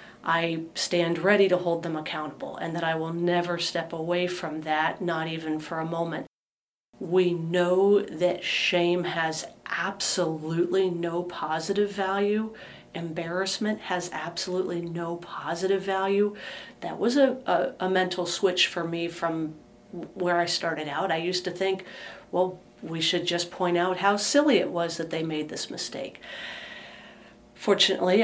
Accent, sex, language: American, female, English